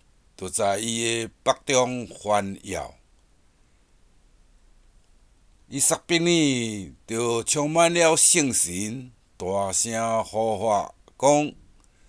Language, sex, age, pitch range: Chinese, male, 60-79, 90-125 Hz